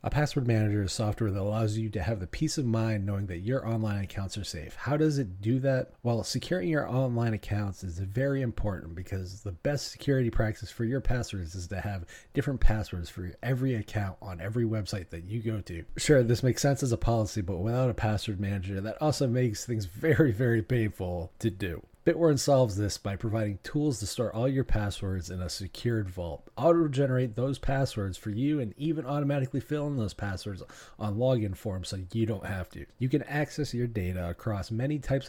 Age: 30-49